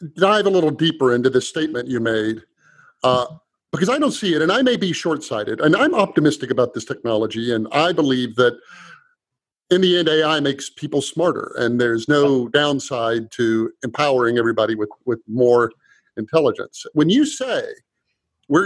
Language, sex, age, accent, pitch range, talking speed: English, male, 50-69, American, 120-180 Hz, 165 wpm